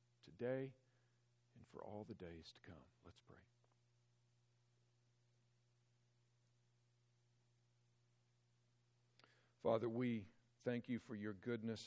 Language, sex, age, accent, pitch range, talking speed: English, male, 50-69, American, 95-120 Hz, 85 wpm